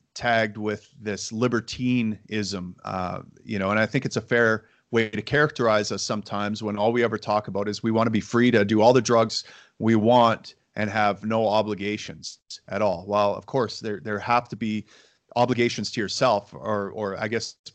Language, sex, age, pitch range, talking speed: English, male, 30-49, 100-115 Hz, 195 wpm